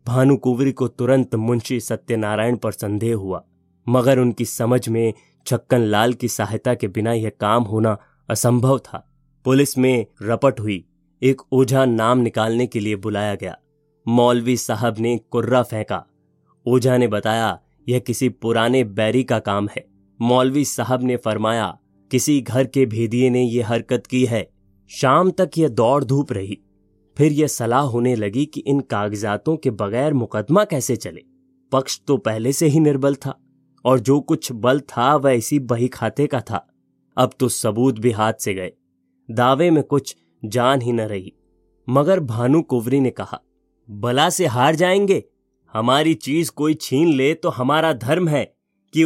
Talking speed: 160 wpm